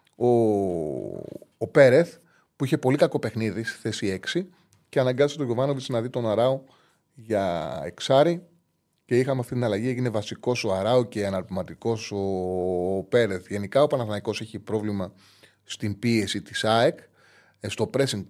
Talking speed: 150 wpm